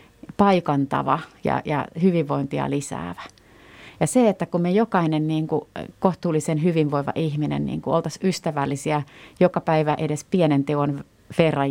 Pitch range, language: 145-175 Hz, Finnish